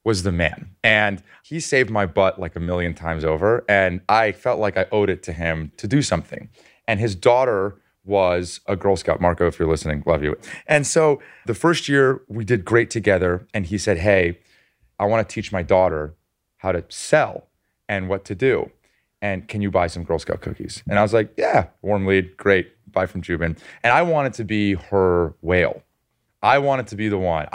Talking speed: 205 wpm